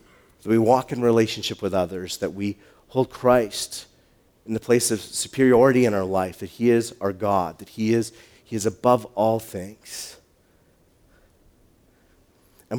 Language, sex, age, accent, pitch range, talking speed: English, male, 40-59, American, 100-125 Hz, 155 wpm